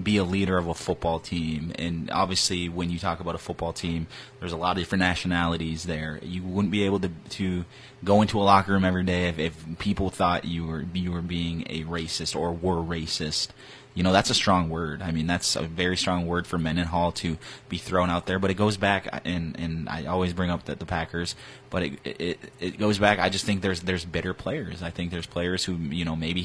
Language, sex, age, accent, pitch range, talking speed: English, male, 20-39, American, 85-95 Hz, 240 wpm